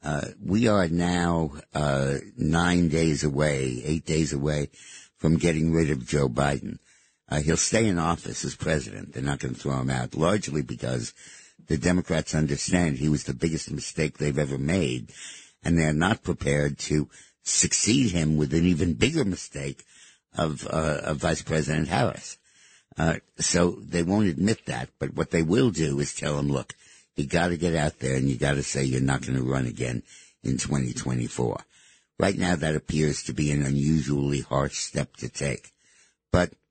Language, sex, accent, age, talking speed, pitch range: English, male, American, 60-79, 175 wpm, 70-85 Hz